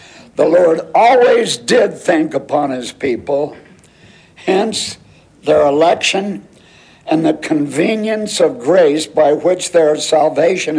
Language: English